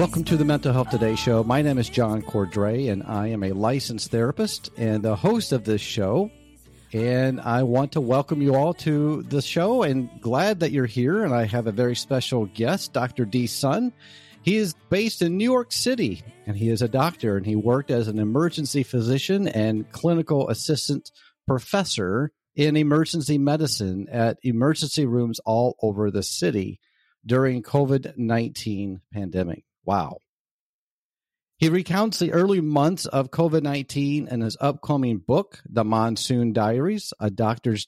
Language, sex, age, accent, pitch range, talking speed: English, male, 50-69, American, 115-155 Hz, 160 wpm